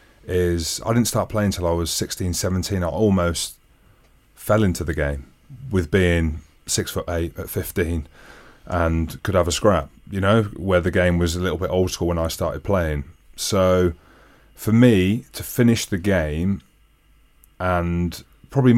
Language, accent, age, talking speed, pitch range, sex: English, British, 30-49, 165 wpm, 85-105 Hz, male